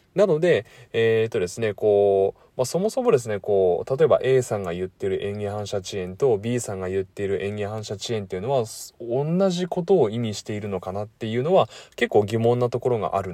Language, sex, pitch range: Japanese, male, 105-145 Hz